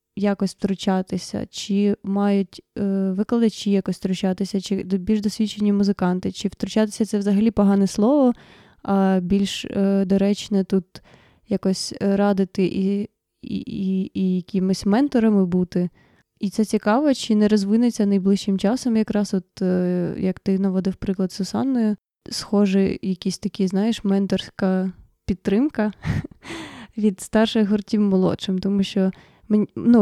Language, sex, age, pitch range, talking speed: Ukrainian, female, 20-39, 195-220 Hz, 125 wpm